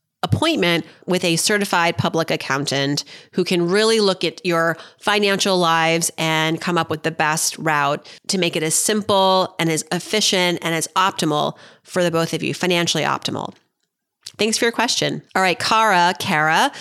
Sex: female